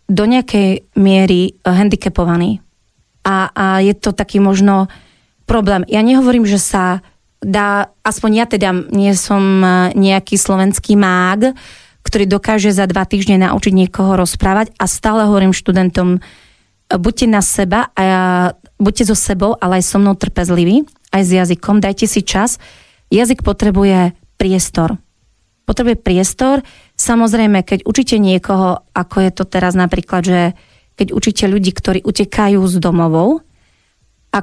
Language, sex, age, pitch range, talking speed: Slovak, female, 30-49, 185-210 Hz, 135 wpm